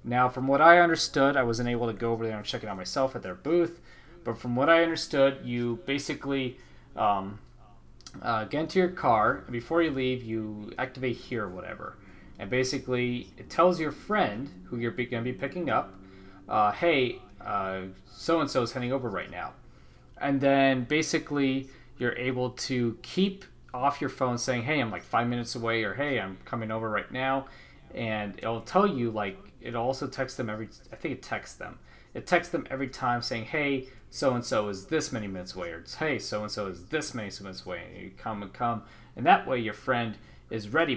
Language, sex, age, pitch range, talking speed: English, male, 30-49, 110-140 Hz, 205 wpm